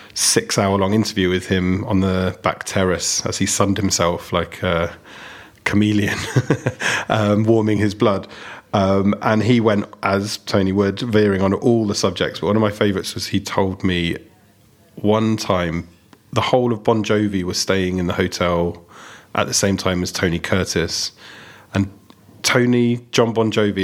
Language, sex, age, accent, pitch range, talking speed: English, male, 30-49, British, 95-110 Hz, 165 wpm